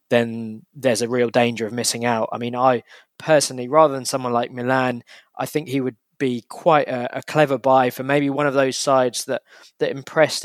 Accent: British